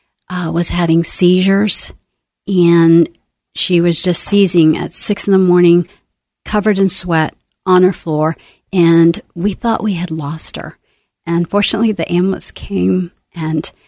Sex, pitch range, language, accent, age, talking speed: female, 165-200 Hz, English, American, 50-69, 145 wpm